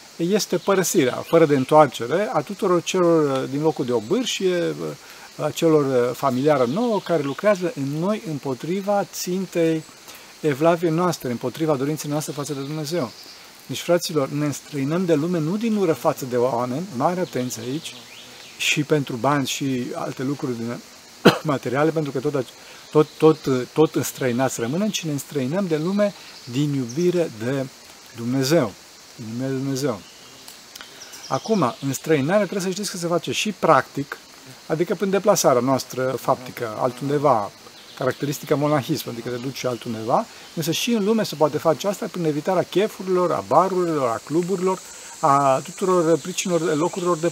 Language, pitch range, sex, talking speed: Romanian, 130-175 Hz, male, 145 wpm